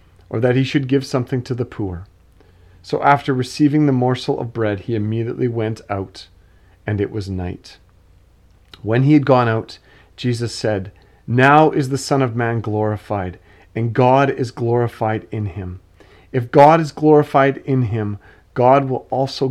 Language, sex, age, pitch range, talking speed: English, male, 40-59, 95-120 Hz, 165 wpm